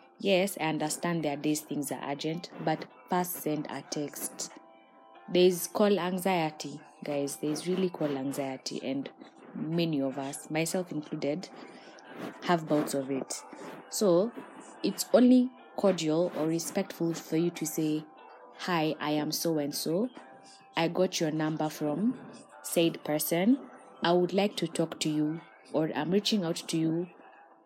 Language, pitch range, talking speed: English, 150-185 Hz, 140 wpm